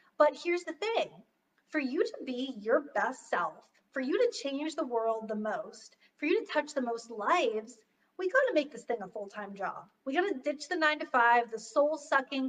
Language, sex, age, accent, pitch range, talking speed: English, female, 30-49, American, 235-315 Hz, 195 wpm